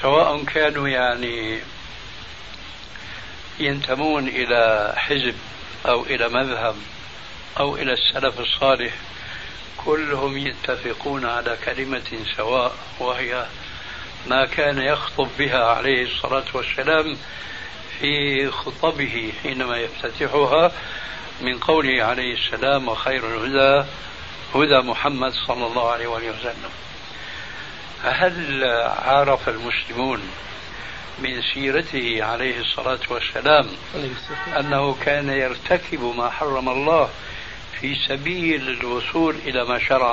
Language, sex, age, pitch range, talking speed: Arabic, male, 60-79, 120-140 Hz, 95 wpm